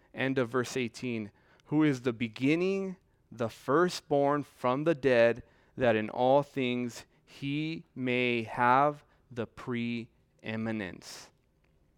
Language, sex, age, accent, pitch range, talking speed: English, male, 30-49, American, 110-140 Hz, 110 wpm